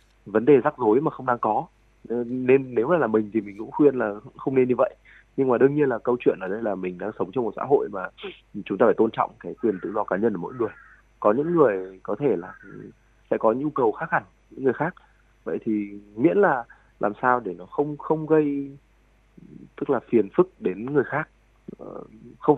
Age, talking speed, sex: 20-39, 235 wpm, male